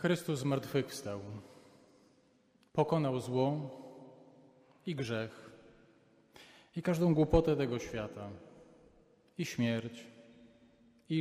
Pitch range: 130-175 Hz